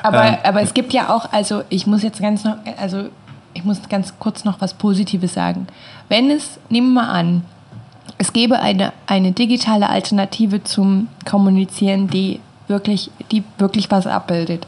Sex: female